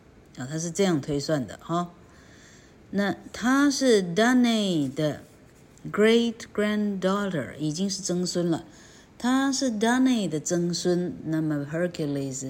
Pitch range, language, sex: 155-220 Hz, Chinese, female